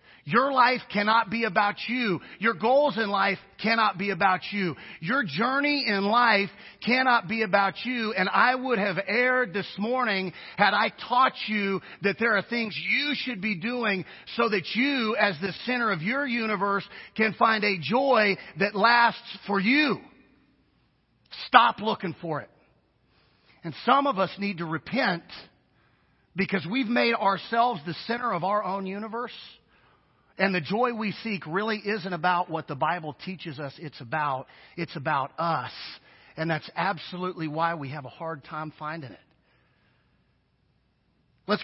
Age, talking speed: 40-59, 155 wpm